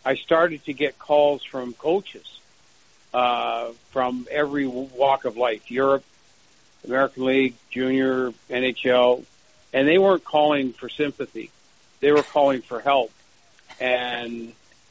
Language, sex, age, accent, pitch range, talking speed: English, male, 60-79, American, 125-145 Hz, 120 wpm